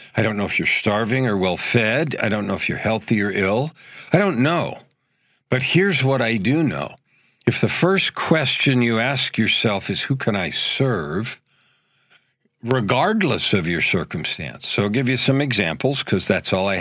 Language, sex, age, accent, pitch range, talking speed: English, male, 50-69, American, 105-130 Hz, 180 wpm